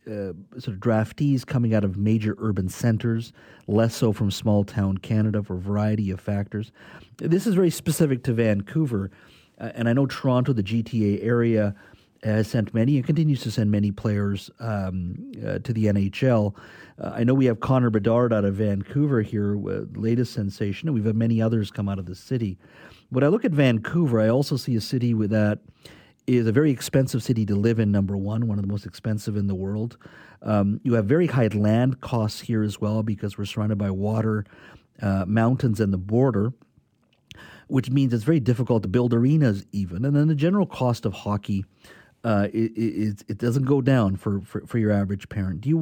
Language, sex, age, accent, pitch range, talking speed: English, male, 40-59, American, 105-125 Hz, 200 wpm